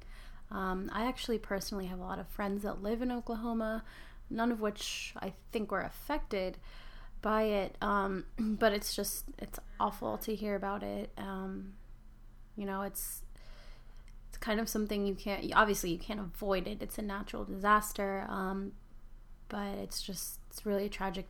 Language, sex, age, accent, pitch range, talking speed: English, female, 20-39, American, 195-220 Hz, 165 wpm